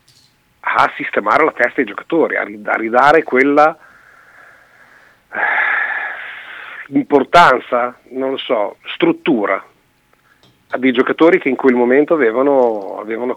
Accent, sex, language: native, male, Italian